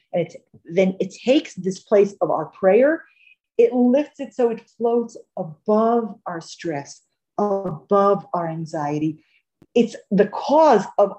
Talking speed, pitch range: 130 wpm, 185-235 Hz